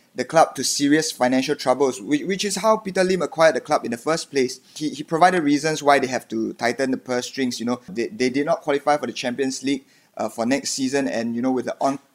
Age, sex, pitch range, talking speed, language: 20-39, male, 130-160 Hz, 255 wpm, English